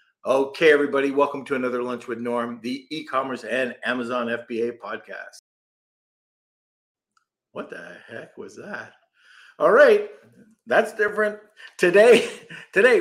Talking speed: 115 wpm